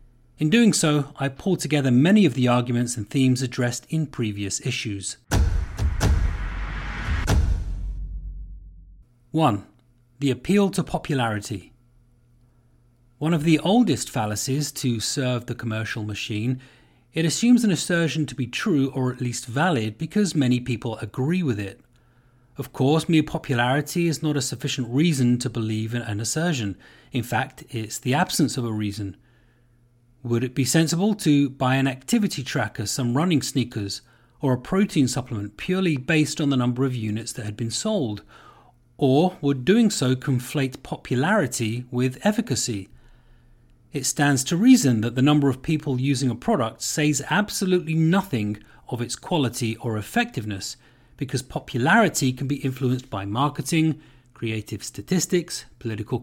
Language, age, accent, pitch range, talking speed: English, 30-49, British, 115-150 Hz, 145 wpm